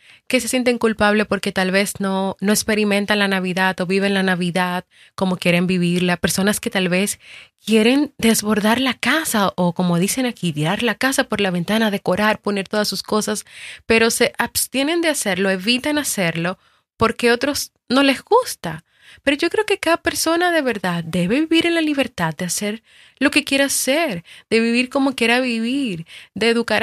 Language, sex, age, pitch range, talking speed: Spanish, female, 30-49, 190-250 Hz, 180 wpm